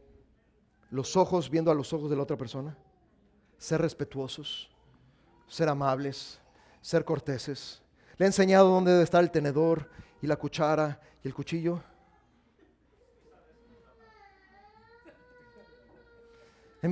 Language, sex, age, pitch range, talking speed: Spanish, male, 40-59, 160-225 Hz, 110 wpm